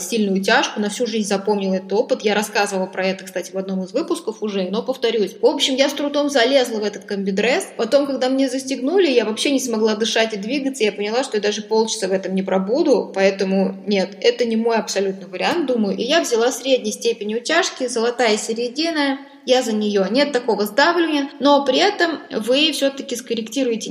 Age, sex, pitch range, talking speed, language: 20-39, female, 200-245 Hz, 195 wpm, Russian